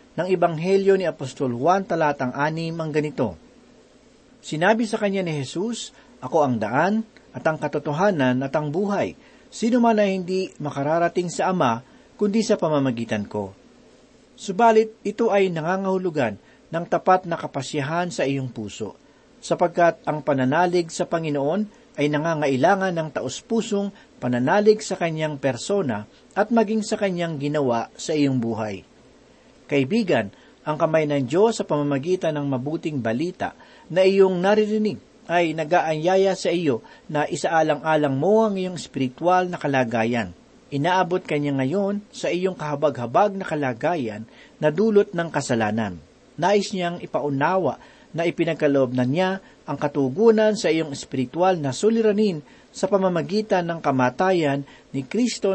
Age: 40-59